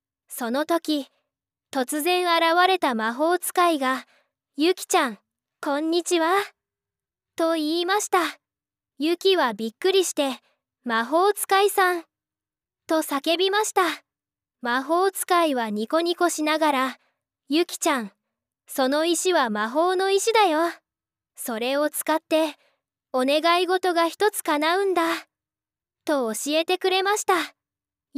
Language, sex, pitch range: Japanese, female, 290-365 Hz